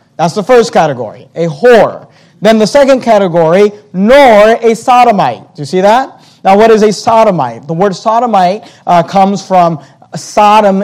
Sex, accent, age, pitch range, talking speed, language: male, American, 30-49, 185-225 Hz, 160 wpm, English